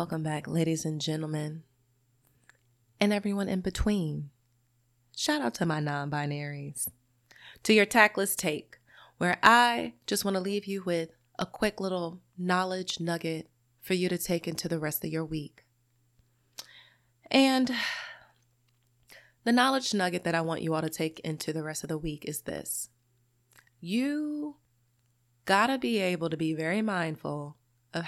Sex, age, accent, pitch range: female, 20-39, American, 125-195 Hz